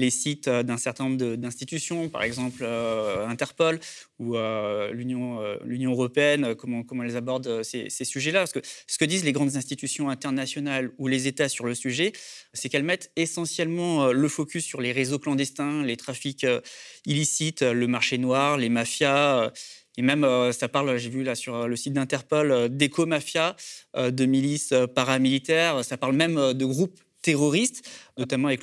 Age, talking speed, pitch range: 20-39, 165 wpm, 125-145 Hz